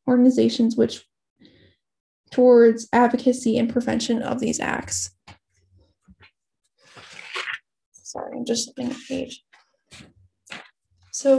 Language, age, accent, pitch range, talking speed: English, 10-29, American, 230-260 Hz, 85 wpm